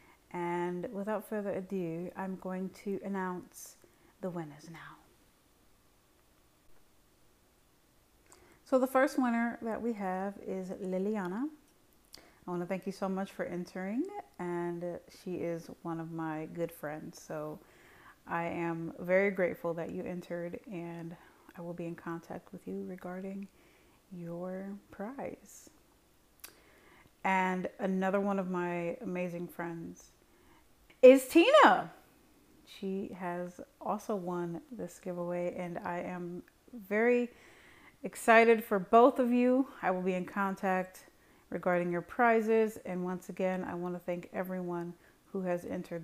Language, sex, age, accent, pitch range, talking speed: English, female, 30-49, American, 175-200 Hz, 130 wpm